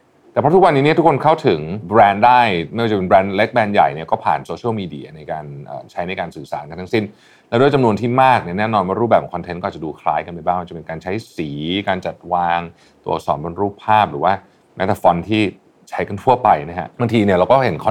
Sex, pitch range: male, 85-115 Hz